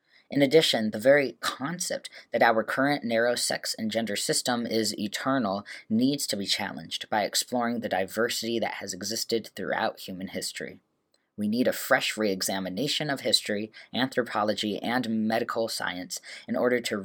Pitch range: 105-130 Hz